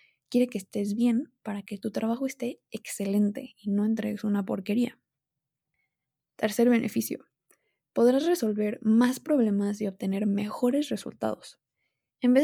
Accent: Mexican